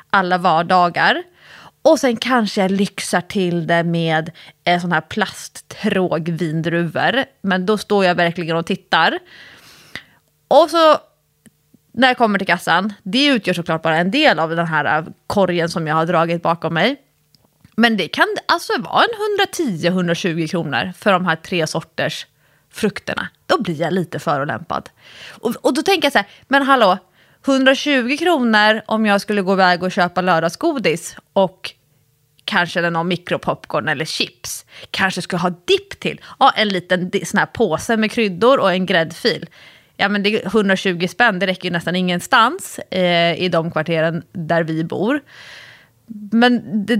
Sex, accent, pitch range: female, Swedish, 170-240 Hz